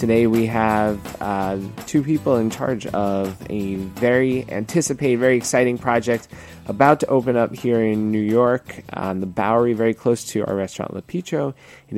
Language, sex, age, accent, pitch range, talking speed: English, male, 20-39, American, 100-125 Hz, 175 wpm